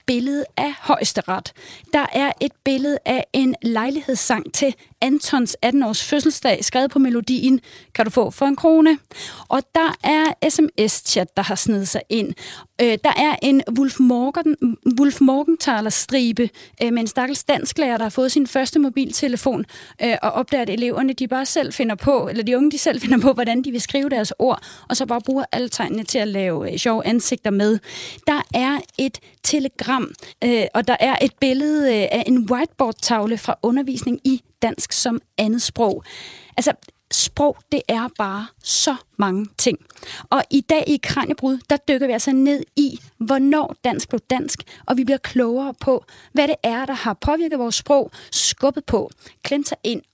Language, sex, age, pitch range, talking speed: Danish, female, 30-49, 230-280 Hz, 170 wpm